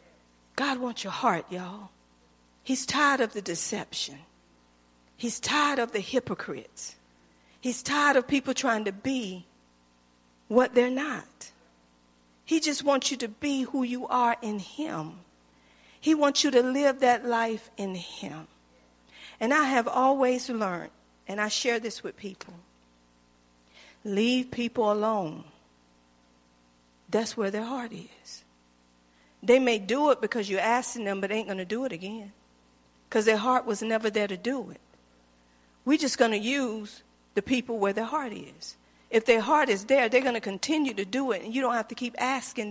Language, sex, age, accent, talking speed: English, female, 50-69, American, 165 wpm